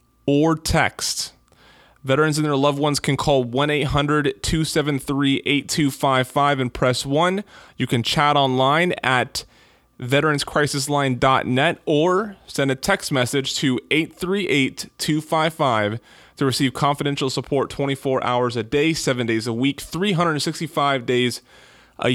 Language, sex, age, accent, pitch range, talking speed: English, male, 20-39, American, 130-155 Hz, 110 wpm